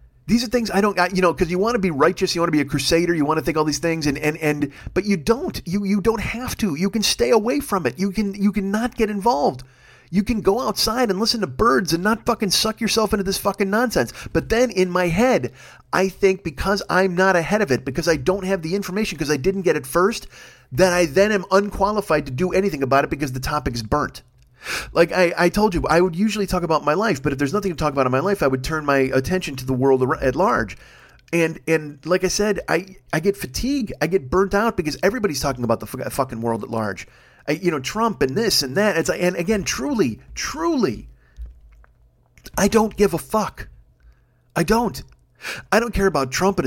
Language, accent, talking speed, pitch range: English, American, 245 wpm, 145-200 Hz